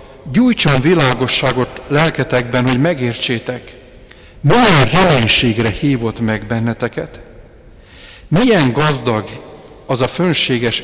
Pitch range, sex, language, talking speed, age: 115-145 Hz, male, Hungarian, 85 wpm, 50-69